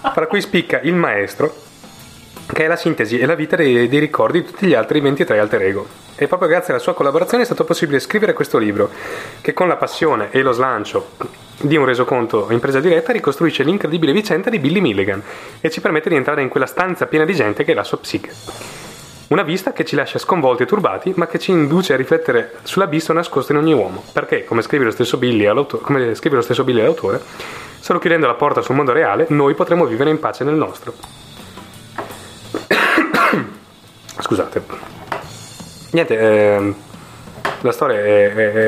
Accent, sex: native, male